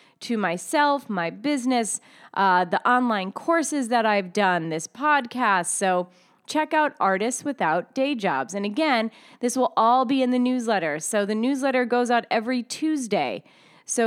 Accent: American